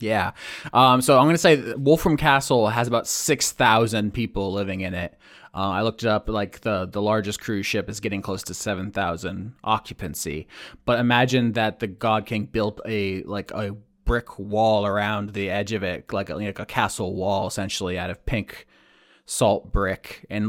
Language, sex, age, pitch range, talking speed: English, male, 20-39, 100-120 Hz, 185 wpm